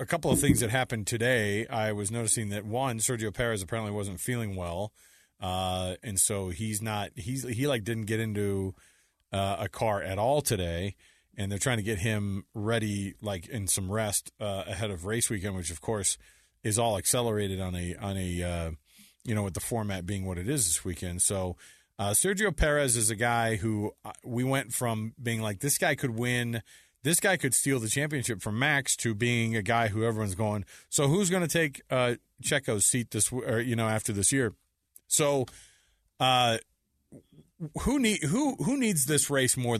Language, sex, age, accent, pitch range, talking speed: English, male, 40-59, American, 105-130 Hz, 200 wpm